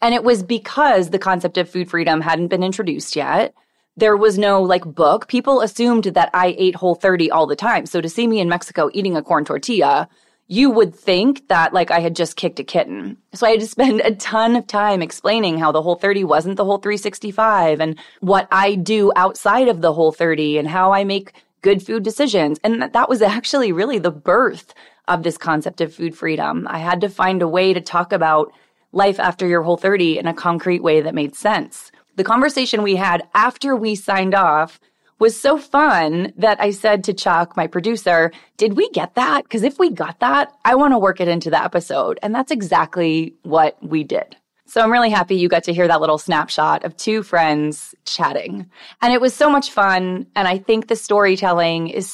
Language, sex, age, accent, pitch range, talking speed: English, female, 20-39, American, 170-220 Hz, 205 wpm